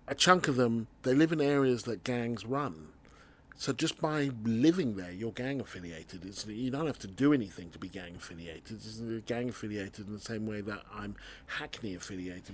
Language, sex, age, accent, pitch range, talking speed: English, male, 40-59, British, 105-130 Hz, 170 wpm